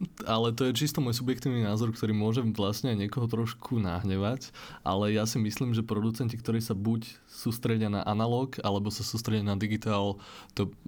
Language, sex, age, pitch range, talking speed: Slovak, male, 20-39, 100-115 Hz, 175 wpm